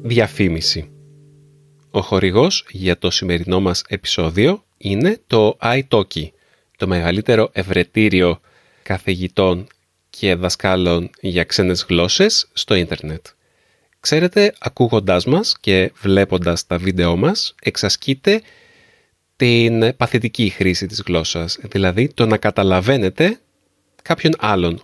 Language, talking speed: Greek, 100 wpm